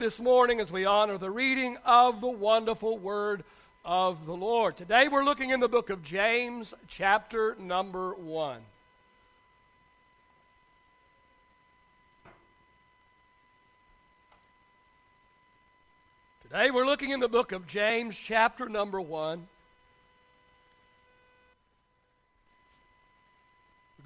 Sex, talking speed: male, 90 wpm